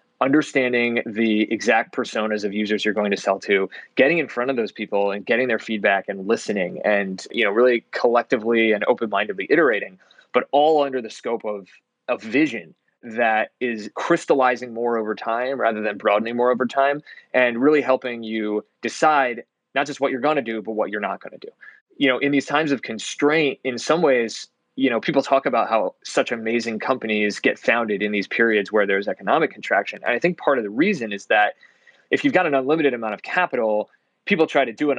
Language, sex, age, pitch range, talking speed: English, male, 20-39, 105-135 Hz, 205 wpm